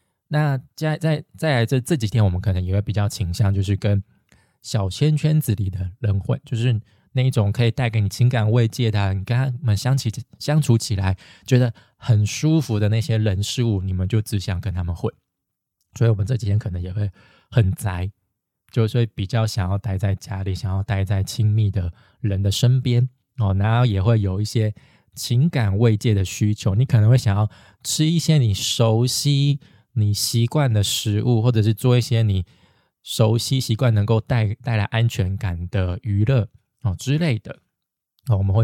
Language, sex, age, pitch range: Chinese, male, 20-39, 100-125 Hz